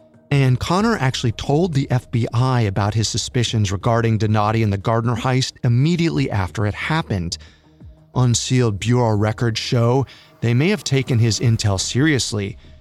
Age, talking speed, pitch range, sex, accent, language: 30-49, 140 wpm, 105-135 Hz, male, American, English